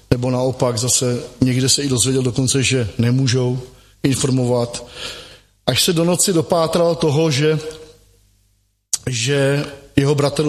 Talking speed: 120 wpm